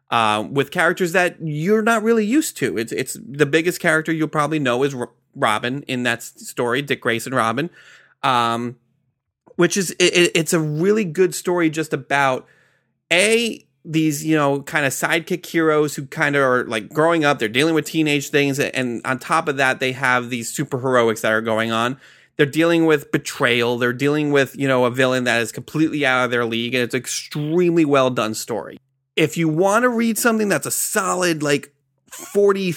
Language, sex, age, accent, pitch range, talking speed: English, male, 30-49, American, 130-165 Hz, 195 wpm